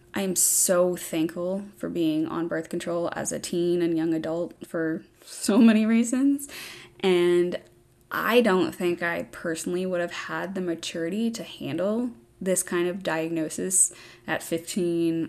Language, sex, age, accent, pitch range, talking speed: English, female, 20-39, American, 160-185 Hz, 150 wpm